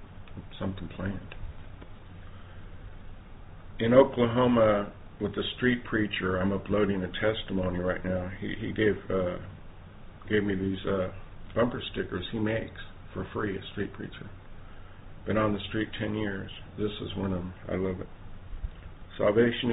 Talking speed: 140 wpm